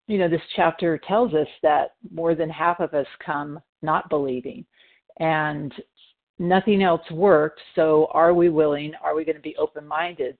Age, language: 50-69, English